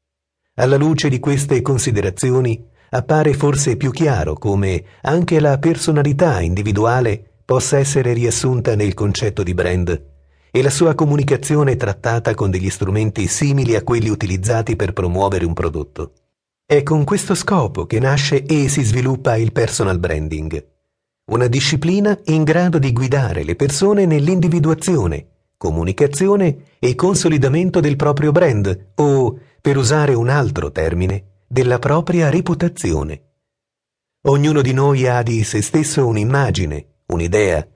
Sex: male